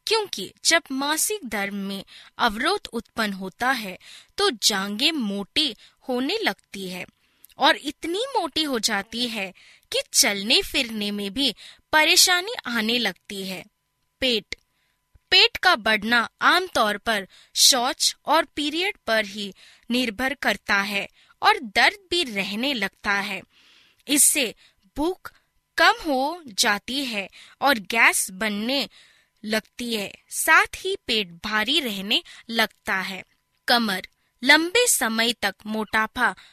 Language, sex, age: Hindi, female, 20-39